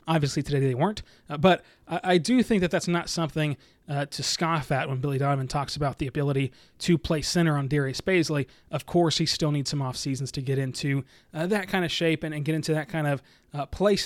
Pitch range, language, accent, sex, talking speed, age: 145-175 Hz, English, American, male, 240 wpm, 20-39